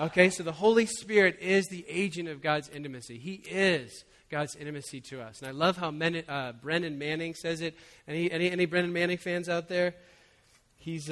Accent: American